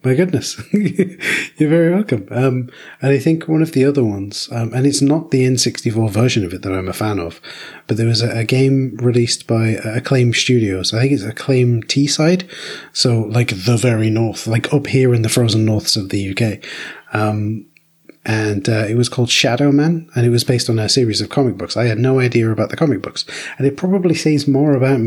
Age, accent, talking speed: 30-49, British, 215 wpm